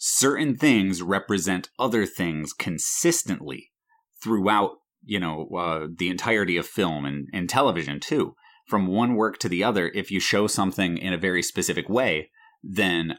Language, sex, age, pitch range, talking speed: English, male, 30-49, 85-115 Hz, 155 wpm